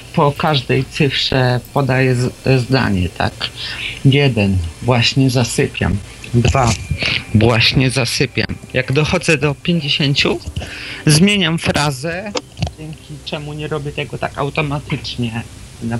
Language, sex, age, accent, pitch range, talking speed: Polish, male, 40-59, native, 120-150 Hz, 100 wpm